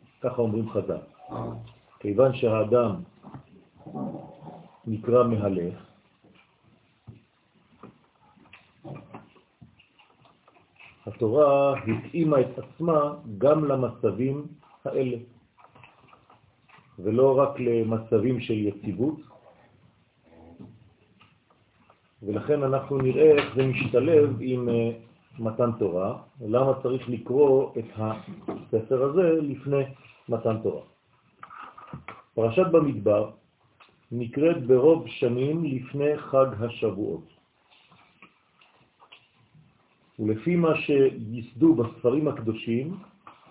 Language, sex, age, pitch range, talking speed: French, male, 40-59, 115-140 Hz, 60 wpm